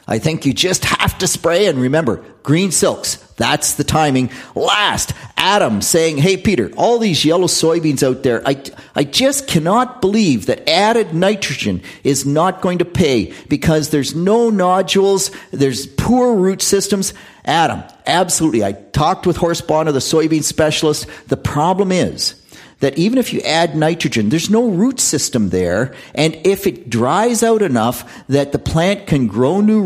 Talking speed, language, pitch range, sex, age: 165 wpm, English, 130-185 Hz, male, 50-69